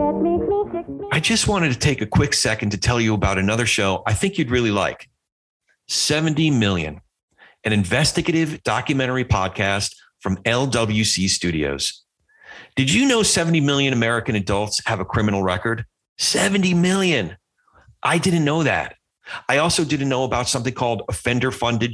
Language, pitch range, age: English, 100-145 Hz, 40-59